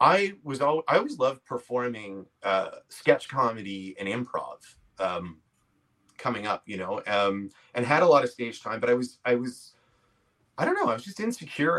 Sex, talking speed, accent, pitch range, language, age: male, 190 wpm, American, 105-135 Hz, English, 30-49